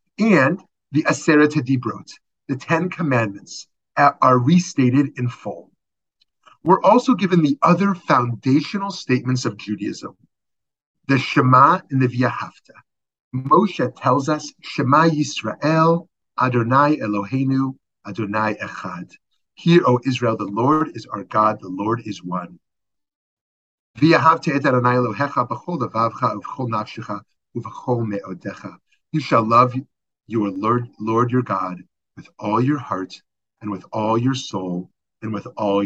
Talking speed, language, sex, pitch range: 130 wpm, English, male, 115-150 Hz